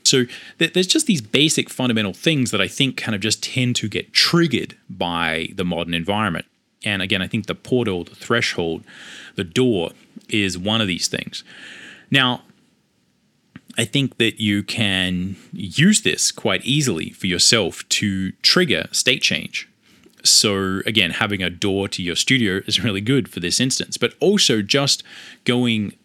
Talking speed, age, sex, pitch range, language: 160 wpm, 20-39, male, 90-120 Hz, English